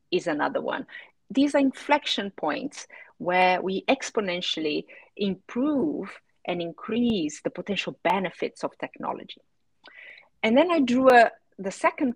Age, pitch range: 40-59, 170-245 Hz